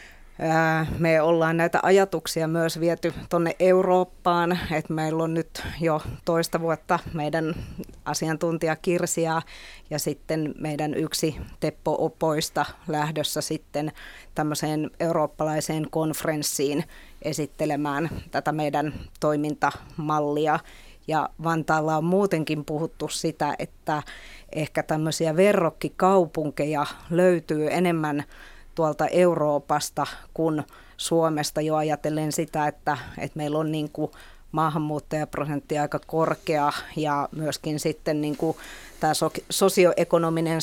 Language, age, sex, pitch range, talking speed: Finnish, 30-49, female, 150-165 Hz, 95 wpm